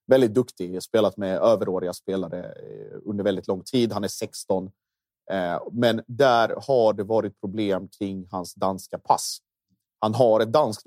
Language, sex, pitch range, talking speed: Swedish, male, 95-110 Hz, 155 wpm